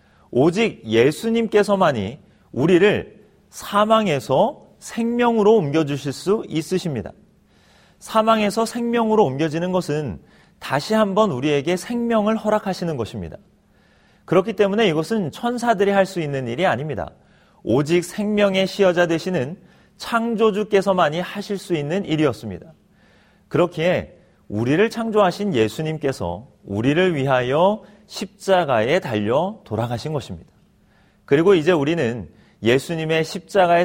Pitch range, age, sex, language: 135-205 Hz, 40-59, male, Korean